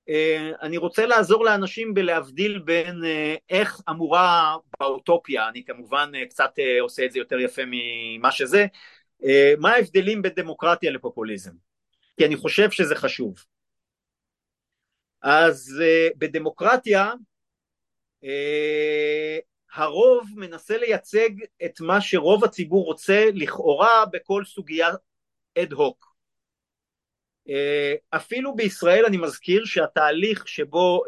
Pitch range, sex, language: 145-215 Hz, male, Hebrew